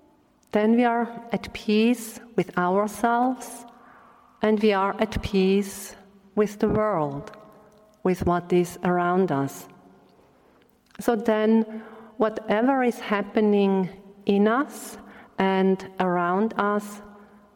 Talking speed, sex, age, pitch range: 105 wpm, female, 50-69, 185-225 Hz